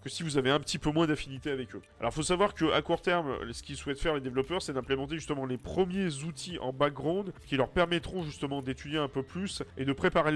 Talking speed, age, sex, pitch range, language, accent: 250 wpm, 30-49, male, 130-180 Hz, French, French